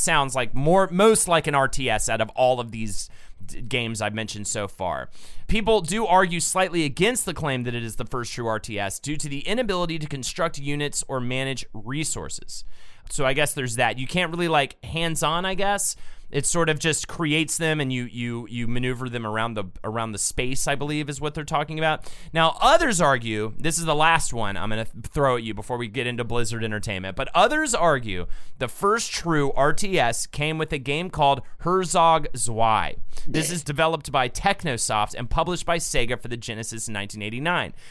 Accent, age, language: American, 30-49, English